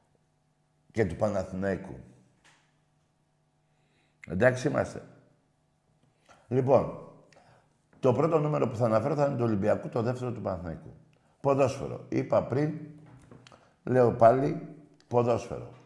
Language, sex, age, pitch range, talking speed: Greek, male, 60-79, 110-155 Hz, 100 wpm